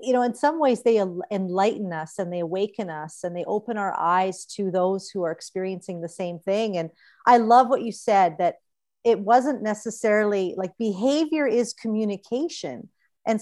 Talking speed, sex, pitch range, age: 180 wpm, female, 180-235 Hz, 40-59